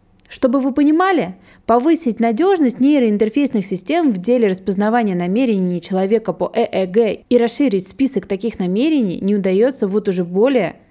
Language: Russian